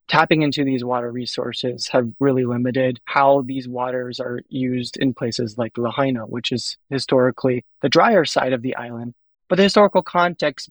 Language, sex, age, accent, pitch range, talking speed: English, male, 20-39, American, 125-150 Hz, 170 wpm